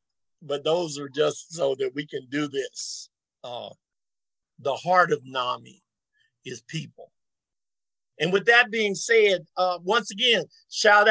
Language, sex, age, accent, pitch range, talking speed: English, male, 50-69, American, 160-210 Hz, 140 wpm